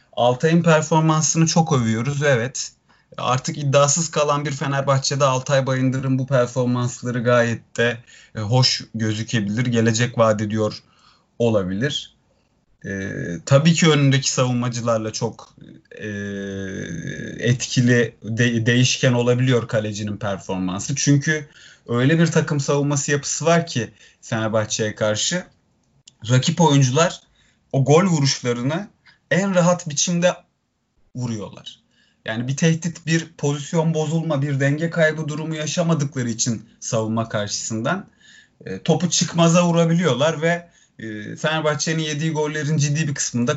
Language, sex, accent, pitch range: Turkish, male, native, 120-160 Hz